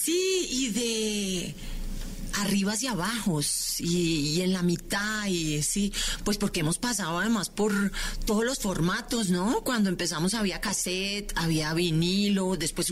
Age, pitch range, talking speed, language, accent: 40-59, 175-215 Hz, 140 wpm, Spanish, Colombian